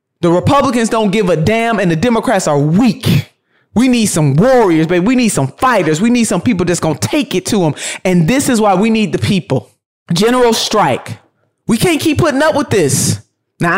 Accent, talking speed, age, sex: American, 215 wpm, 20-39, male